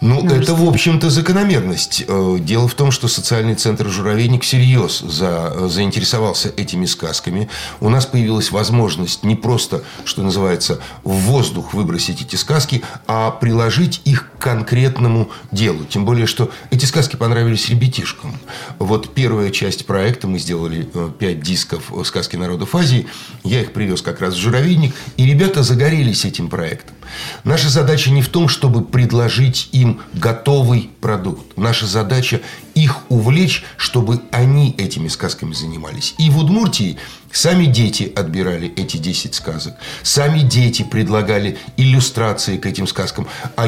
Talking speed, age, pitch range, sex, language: 140 wpm, 60-79, 105-135 Hz, male, Russian